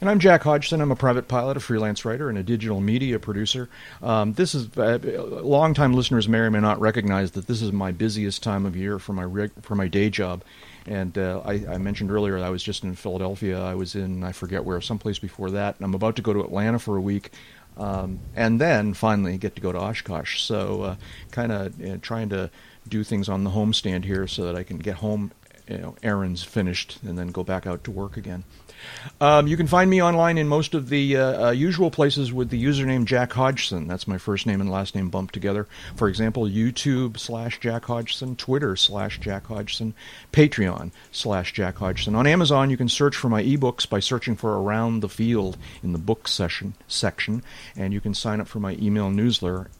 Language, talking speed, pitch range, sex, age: English, 220 wpm, 95-120 Hz, male, 40-59